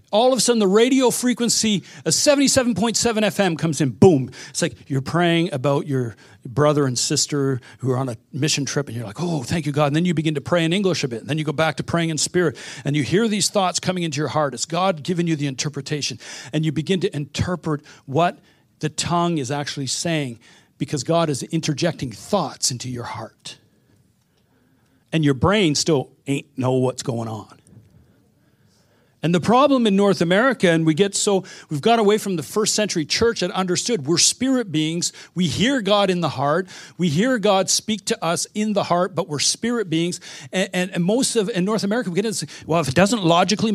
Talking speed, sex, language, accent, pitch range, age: 215 wpm, male, English, American, 145-195 Hz, 50-69